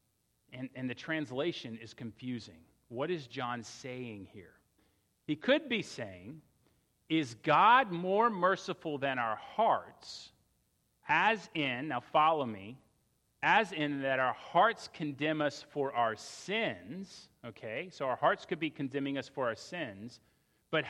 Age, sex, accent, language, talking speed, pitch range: 40-59, male, American, English, 140 wpm, 120-170 Hz